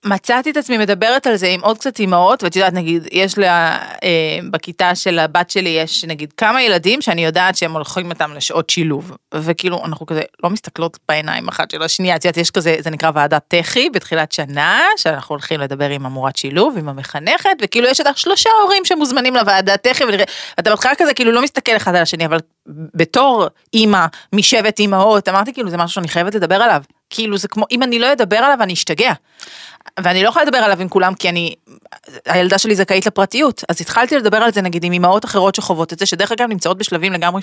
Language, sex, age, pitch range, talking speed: Hebrew, female, 30-49, 170-220 Hz, 175 wpm